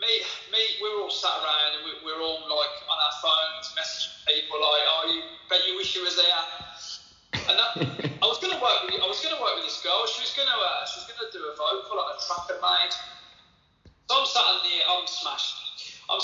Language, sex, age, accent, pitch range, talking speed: English, male, 20-39, British, 155-245 Hz, 235 wpm